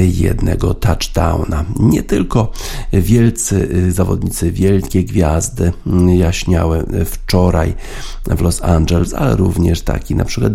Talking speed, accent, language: 100 wpm, native, Polish